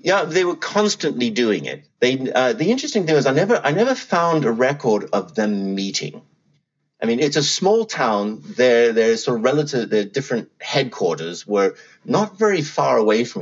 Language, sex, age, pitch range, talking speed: English, male, 30-49, 95-155 Hz, 190 wpm